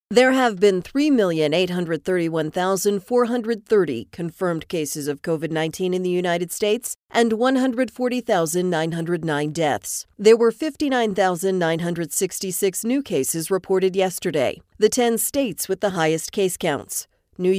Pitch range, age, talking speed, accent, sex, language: 170-225 Hz, 40-59, 105 wpm, American, female, English